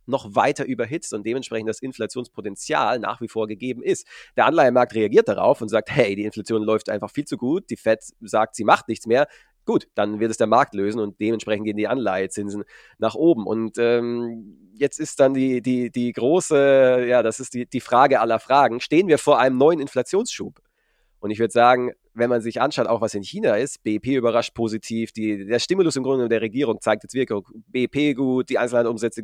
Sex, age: male, 30-49